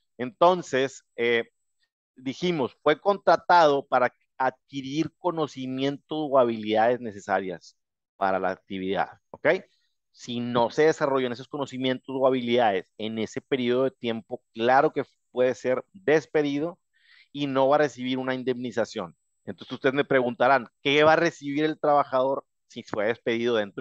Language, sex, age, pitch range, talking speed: Spanish, male, 30-49, 125-155 Hz, 135 wpm